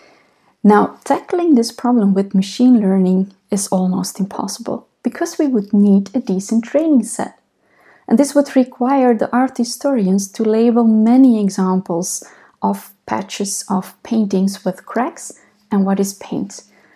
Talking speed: 140 wpm